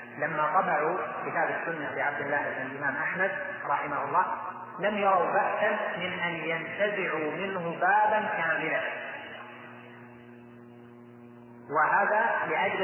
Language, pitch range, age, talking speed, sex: Arabic, 160-200 Hz, 30-49, 105 wpm, male